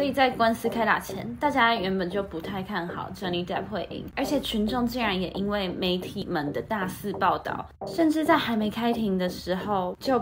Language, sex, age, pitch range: Chinese, female, 20-39, 185-240 Hz